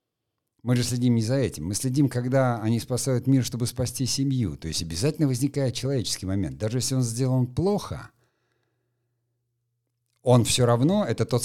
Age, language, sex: 50-69, Russian, male